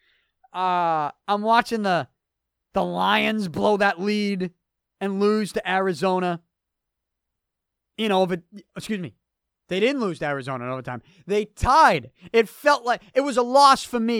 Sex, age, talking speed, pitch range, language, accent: male, 30-49, 150 wpm, 165-280 Hz, English, American